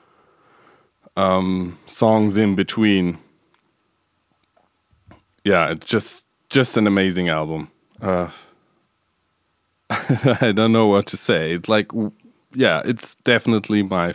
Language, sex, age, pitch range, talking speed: English, male, 20-39, 85-105 Hz, 105 wpm